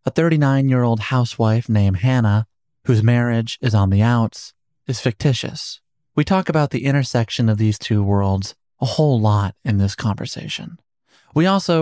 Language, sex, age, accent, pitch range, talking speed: English, male, 30-49, American, 110-140 Hz, 160 wpm